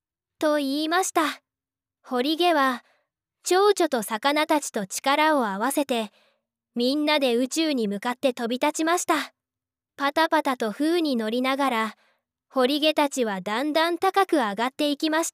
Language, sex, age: Japanese, female, 10-29